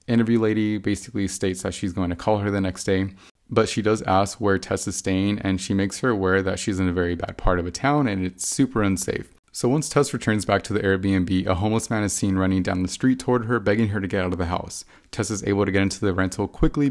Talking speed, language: 270 wpm, English